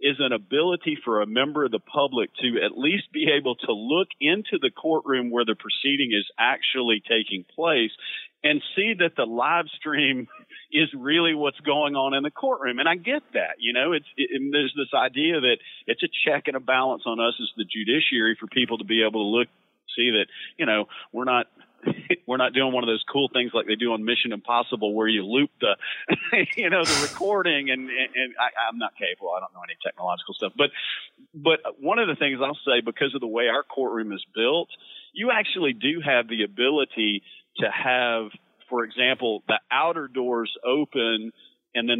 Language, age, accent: English, 40-59, American